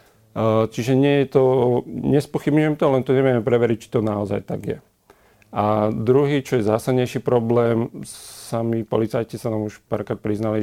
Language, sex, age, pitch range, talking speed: Slovak, male, 40-59, 105-120 Hz, 145 wpm